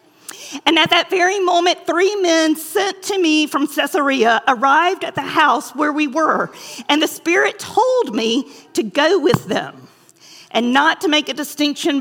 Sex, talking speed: female, 170 wpm